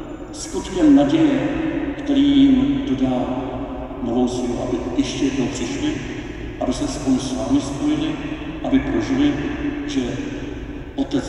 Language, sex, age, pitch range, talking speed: Czech, male, 50-69, 275-315 Hz, 105 wpm